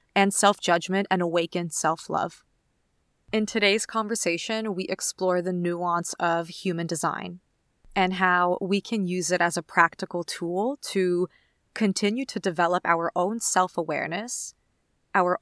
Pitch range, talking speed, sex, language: 175-195 Hz, 130 wpm, female, English